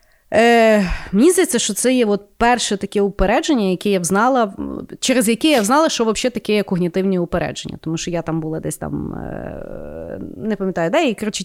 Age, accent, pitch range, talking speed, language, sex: 30-49, native, 180-250 Hz, 180 wpm, Ukrainian, female